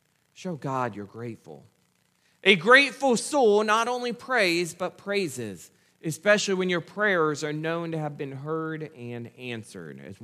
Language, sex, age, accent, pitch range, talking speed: English, male, 40-59, American, 145-205 Hz, 145 wpm